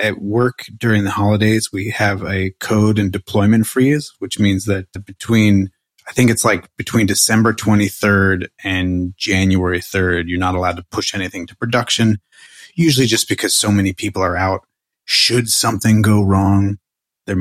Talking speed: 160 wpm